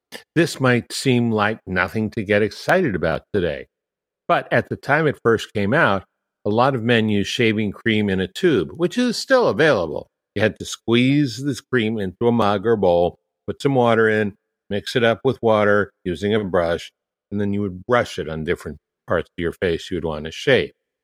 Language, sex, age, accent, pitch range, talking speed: English, male, 60-79, American, 100-130 Hz, 205 wpm